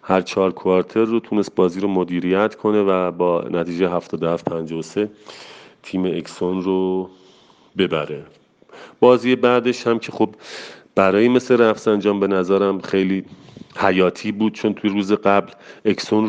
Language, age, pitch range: Persian, 30-49, 90-105 Hz